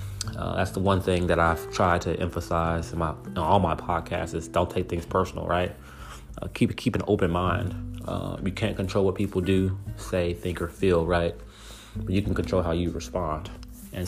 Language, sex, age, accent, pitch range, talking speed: English, male, 30-49, American, 90-100 Hz, 205 wpm